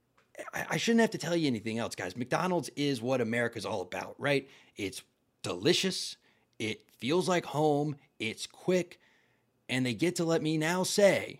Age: 30-49